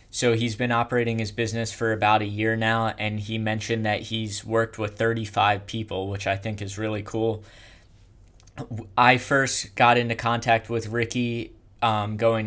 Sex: male